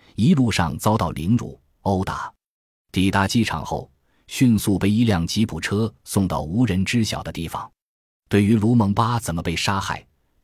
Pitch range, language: 90-115 Hz, Chinese